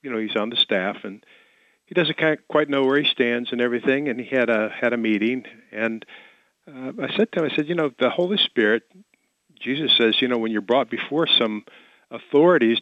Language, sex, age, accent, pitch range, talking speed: English, male, 50-69, American, 105-130 Hz, 215 wpm